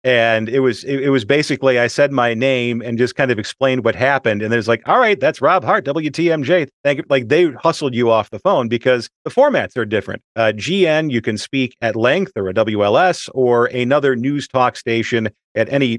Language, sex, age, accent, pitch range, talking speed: English, male, 40-59, American, 115-145 Hz, 215 wpm